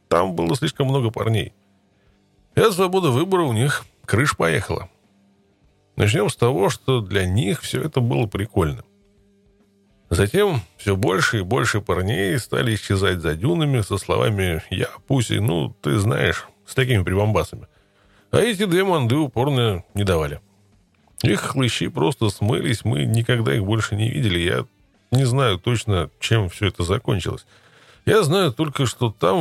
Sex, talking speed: male, 150 wpm